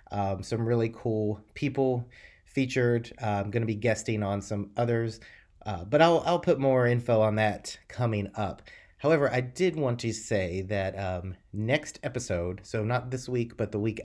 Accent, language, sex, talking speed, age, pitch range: American, English, male, 185 wpm, 30-49, 100-120 Hz